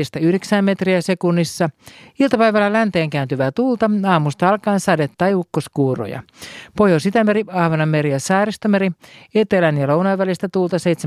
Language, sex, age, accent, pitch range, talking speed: Finnish, male, 50-69, native, 150-190 Hz, 115 wpm